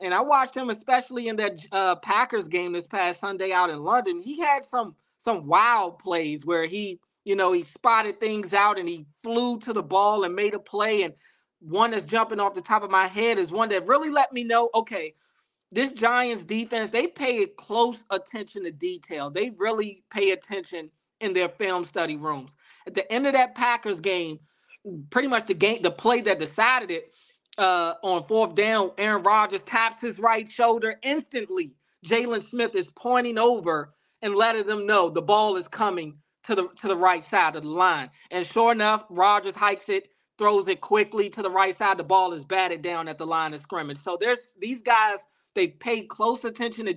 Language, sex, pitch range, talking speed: English, male, 185-230 Hz, 200 wpm